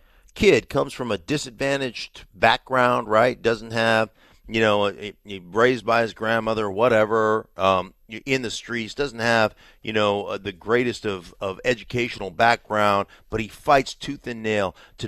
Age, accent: 40-59, American